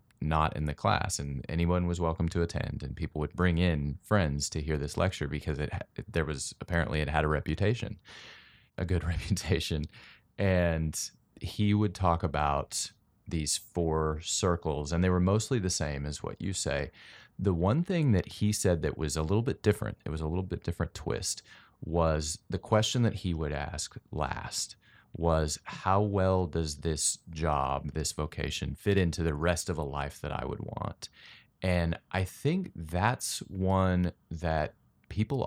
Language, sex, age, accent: English, male, 30-49, American